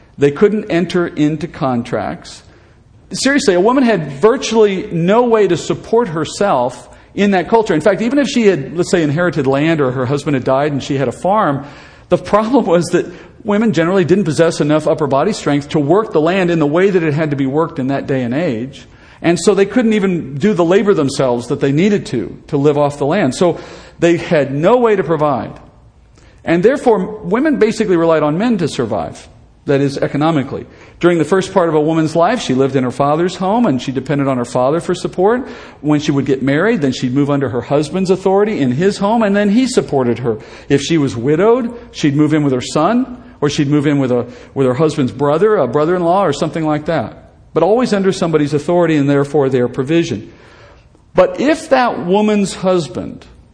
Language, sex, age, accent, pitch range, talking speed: English, male, 50-69, American, 140-200 Hz, 210 wpm